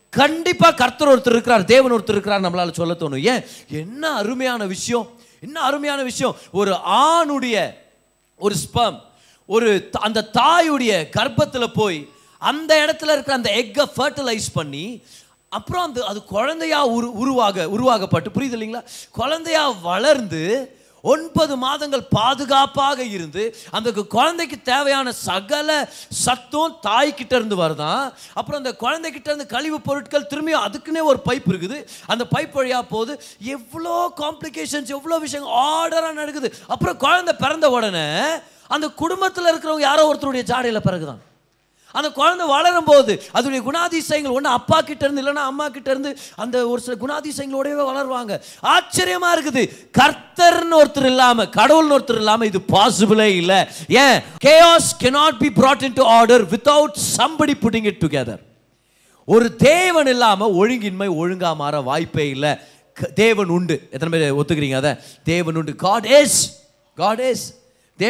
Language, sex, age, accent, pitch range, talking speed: Tamil, male, 30-49, native, 205-290 Hz, 85 wpm